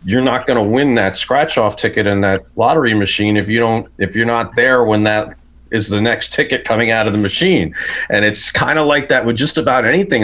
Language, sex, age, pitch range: English, male, 40-59, 115-155 Hz